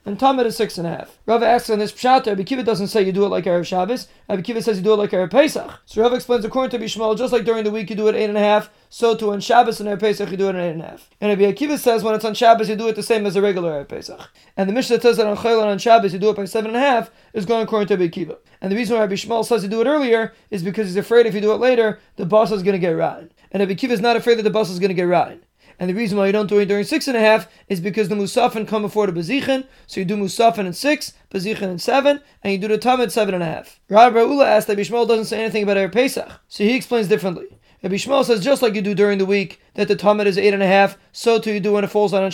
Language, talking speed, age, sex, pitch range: English, 300 wpm, 20-39, male, 200-235 Hz